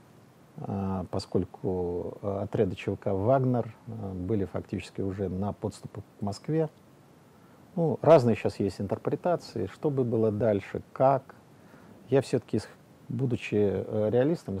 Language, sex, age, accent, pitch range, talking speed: Russian, male, 50-69, native, 100-130 Hz, 105 wpm